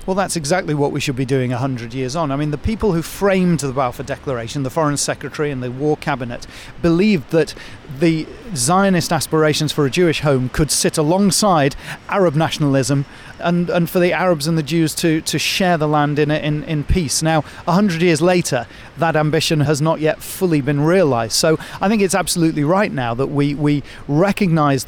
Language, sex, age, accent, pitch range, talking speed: English, male, 40-59, British, 140-165 Hz, 195 wpm